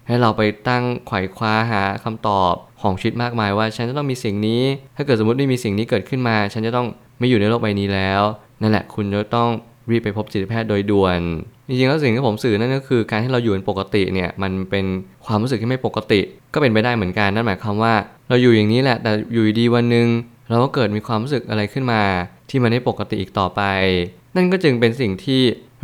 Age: 20-39